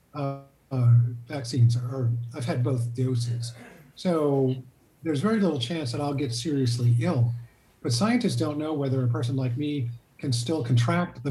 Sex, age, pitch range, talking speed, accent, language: male, 50-69, 120-145 Hz, 170 wpm, American, English